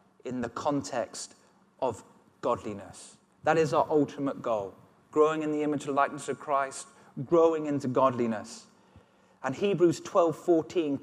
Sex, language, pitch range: male, English, 140-170 Hz